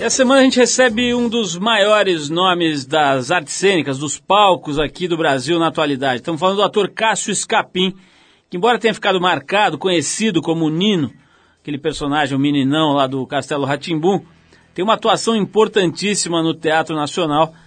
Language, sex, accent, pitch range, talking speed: Portuguese, male, Brazilian, 140-185 Hz, 165 wpm